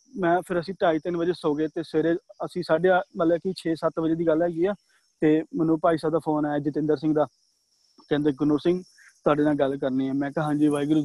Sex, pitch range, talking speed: male, 150-170 Hz, 230 wpm